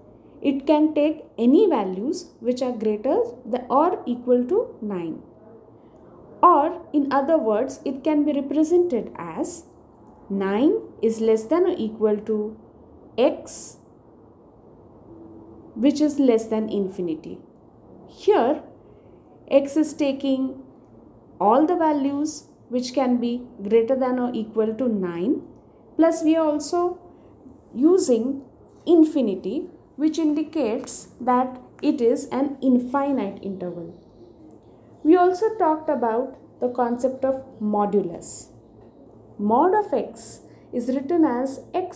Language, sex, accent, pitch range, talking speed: English, female, Indian, 225-310 Hz, 115 wpm